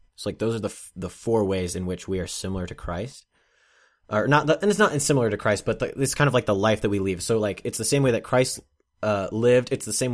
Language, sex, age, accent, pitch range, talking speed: English, male, 20-39, American, 90-110 Hz, 295 wpm